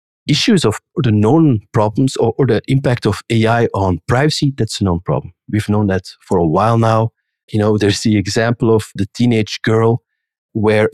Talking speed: 185 wpm